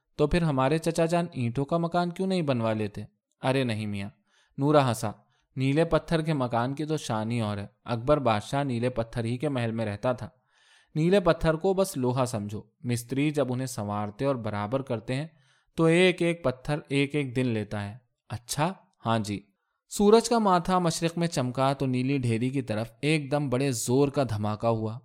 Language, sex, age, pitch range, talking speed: Urdu, male, 20-39, 115-150 Hz, 190 wpm